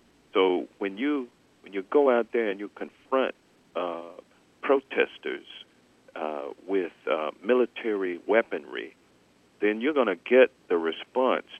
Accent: American